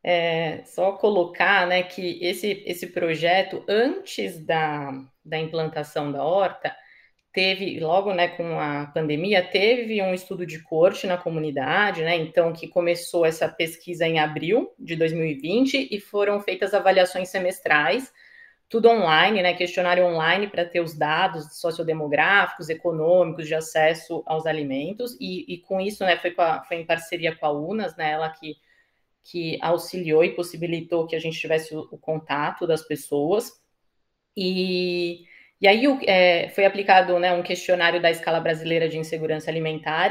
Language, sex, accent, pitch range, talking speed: Portuguese, female, Brazilian, 160-195 Hz, 150 wpm